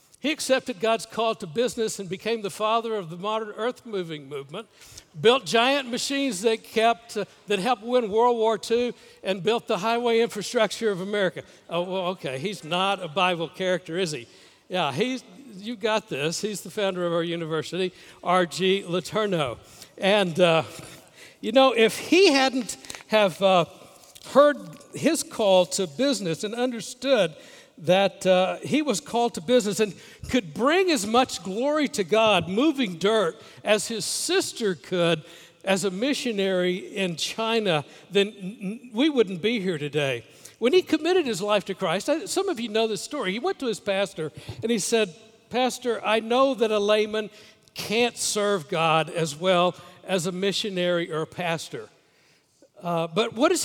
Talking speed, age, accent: 165 wpm, 60-79, American